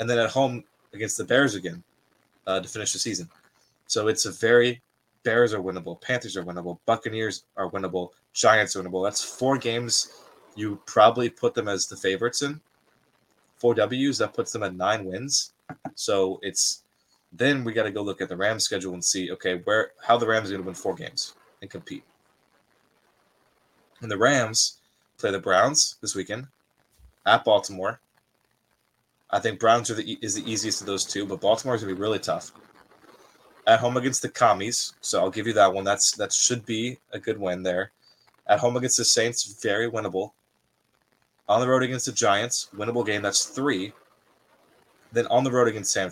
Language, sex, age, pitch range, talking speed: English, male, 20-39, 95-125 Hz, 185 wpm